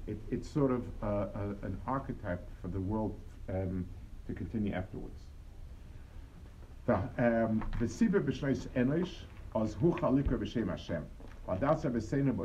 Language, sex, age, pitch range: English, male, 50-69, 95-130 Hz